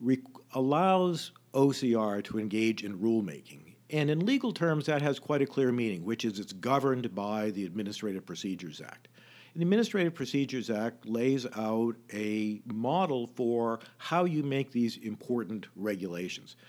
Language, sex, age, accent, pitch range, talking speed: English, male, 50-69, American, 110-140 Hz, 145 wpm